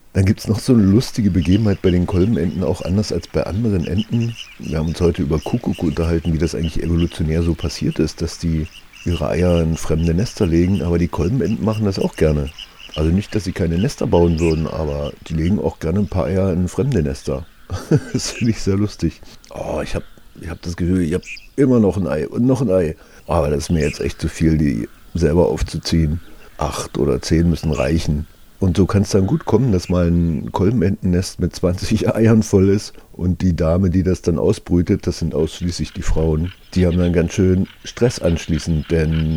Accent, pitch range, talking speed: German, 80-100 Hz, 210 wpm